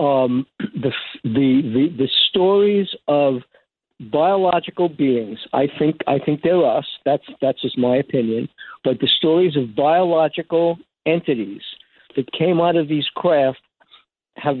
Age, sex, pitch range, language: 60-79, male, 135-180 Hz, English